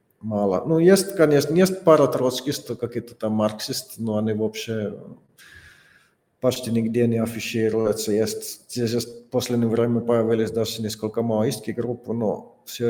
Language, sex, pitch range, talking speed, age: Russian, male, 115-140 Hz, 140 wpm, 50-69